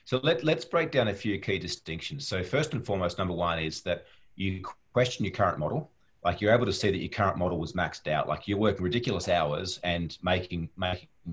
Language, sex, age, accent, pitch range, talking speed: English, male, 30-49, Australian, 90-115 Hz, 220 wpm